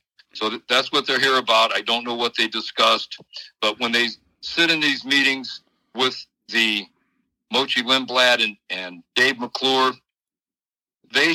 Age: 60-79